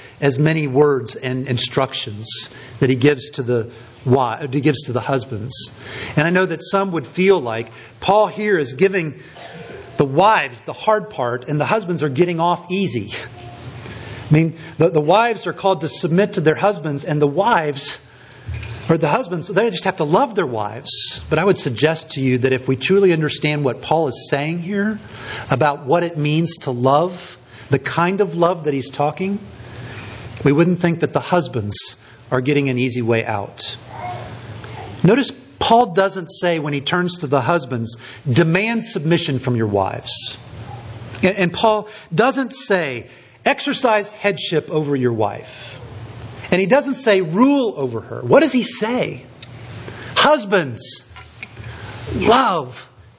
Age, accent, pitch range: 50-69, American, 120-180 Hz